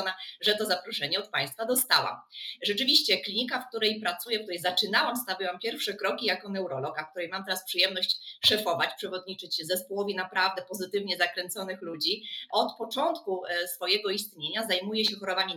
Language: Polish